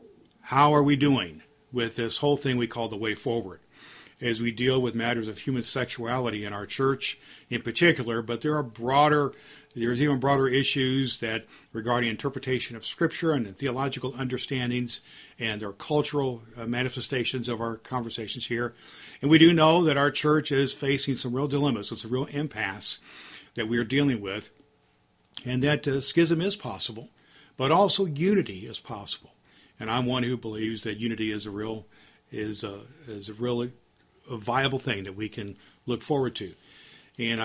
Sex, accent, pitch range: male, American, 115-140 Hz